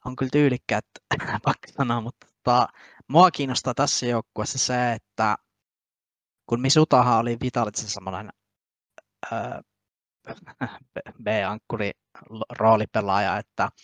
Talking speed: 70 wpm